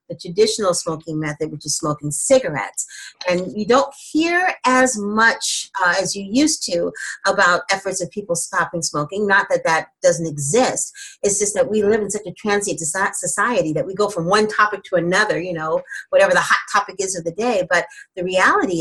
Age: 30-49